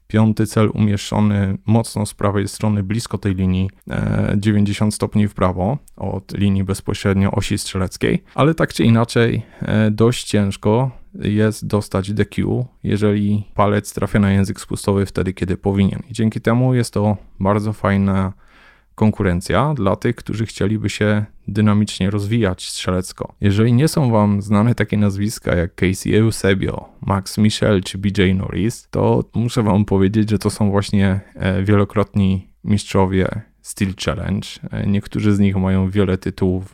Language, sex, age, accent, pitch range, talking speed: Polish, male, 20-39, native, 95-110 Hz, 140 wpm